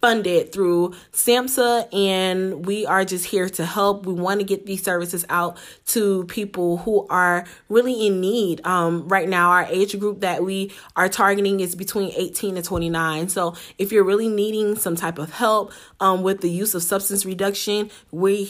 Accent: American